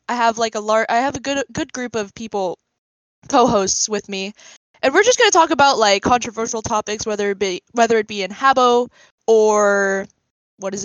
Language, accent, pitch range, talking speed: English, American, 195-245 Hz, 205 wpm